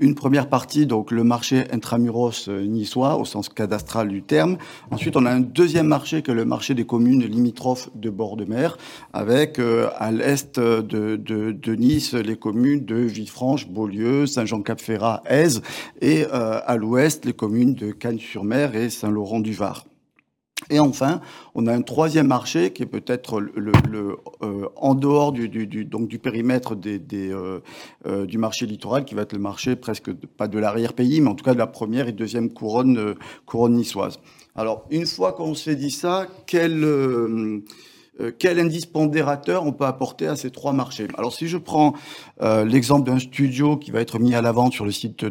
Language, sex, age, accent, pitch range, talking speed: French, male, 50-69, French, 110-135 Hz, 190 wpm